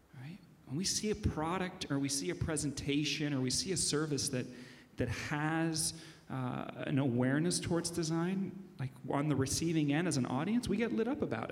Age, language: 40-59, English